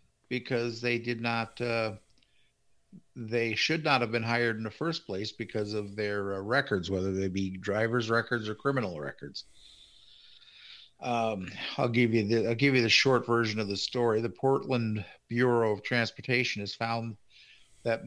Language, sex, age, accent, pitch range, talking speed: English, male, 50-69, American, 110-130 Hz, 165 wpm